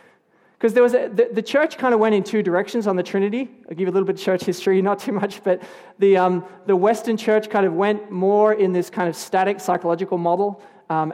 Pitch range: 175-215 Hz